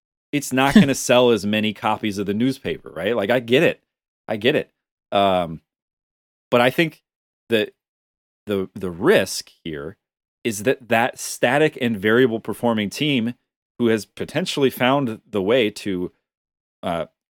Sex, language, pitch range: male, English, 95-135 Hz